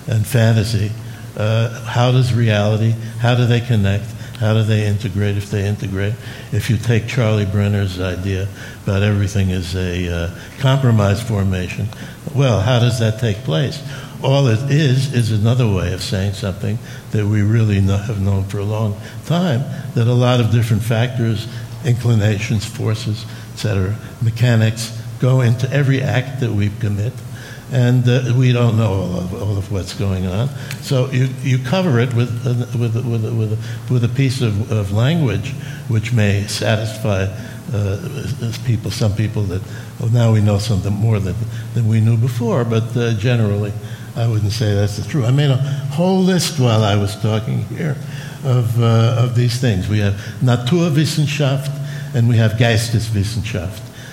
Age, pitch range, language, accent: 60-79, 105-125 Hz, English, American